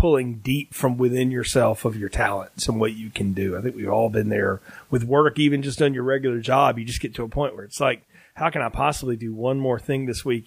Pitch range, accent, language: 120-165 Hz, American, English